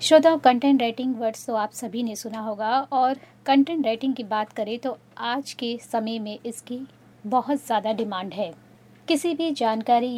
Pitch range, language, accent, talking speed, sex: 225-280 Hz, Hindi, native, 170 wpm, female